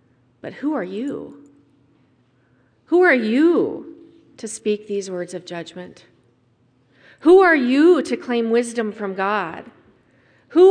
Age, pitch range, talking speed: 40-59, 205-270 Hz, 125 wpm